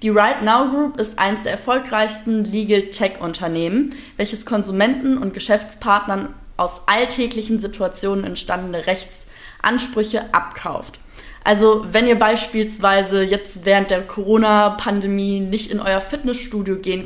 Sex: female